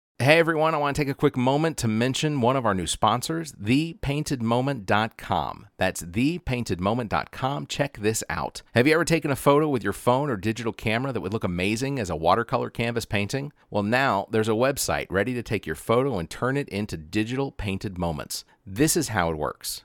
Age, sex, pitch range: 40-59, male, 95-135 Hz